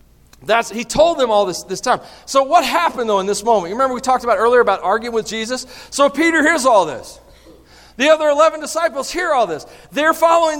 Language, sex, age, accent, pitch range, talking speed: English, male, 40-59, American, 220-310 Hz, 220 wpm